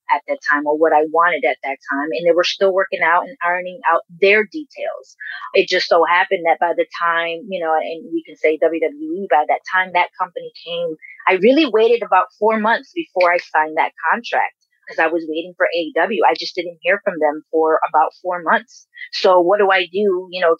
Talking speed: 220 wpm